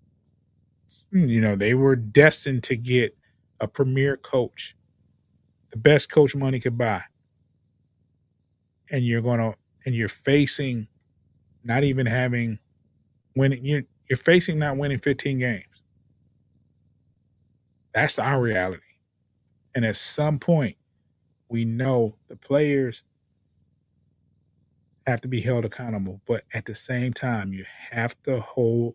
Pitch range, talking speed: 110-140 Hz, 120 wpm